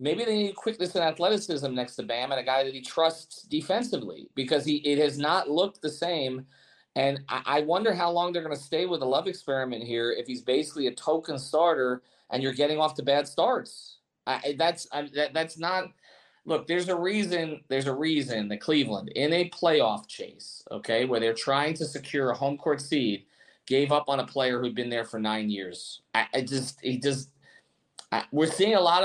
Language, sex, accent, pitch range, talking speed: English, male, American, 130-170 Hz, 200 wpm